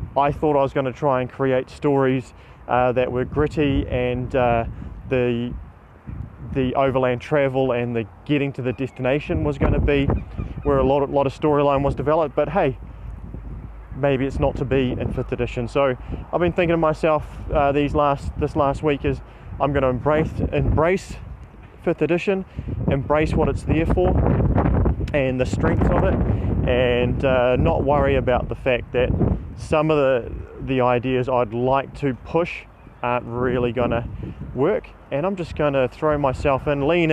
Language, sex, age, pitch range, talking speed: English, male, 30-49, 120-145 Hz, 175 wpm